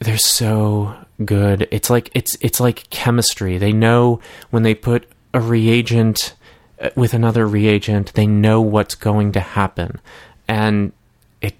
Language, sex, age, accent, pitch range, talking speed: English, male, 30-49, American, 105-120 Hz, 140 wpm